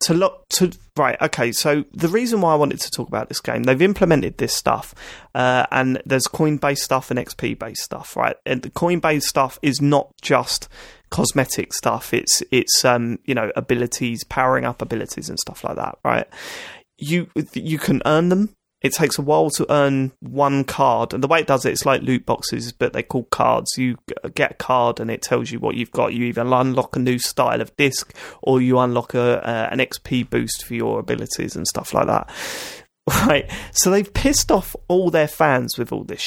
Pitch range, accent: 125-155 Hz, British